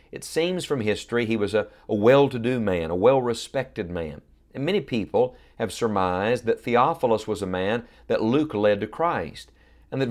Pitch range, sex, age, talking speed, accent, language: 105-140 Hz, male, 40-59, 180 wpm, American, English